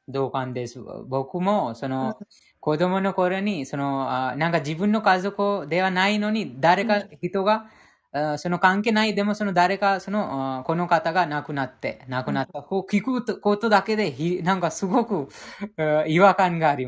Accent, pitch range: Indian, 135-195 Hz